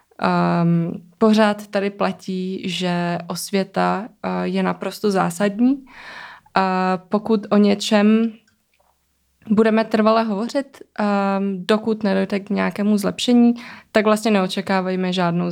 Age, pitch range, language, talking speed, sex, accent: 20-39, 195-220 Hz, Czech, 105 wpm, female, native